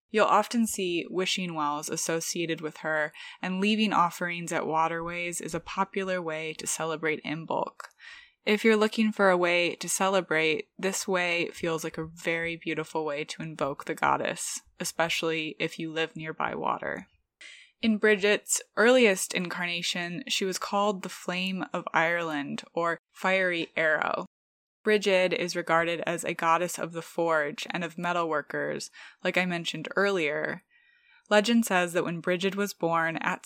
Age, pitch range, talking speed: 20-39, 165-195 Hz, 150 wpm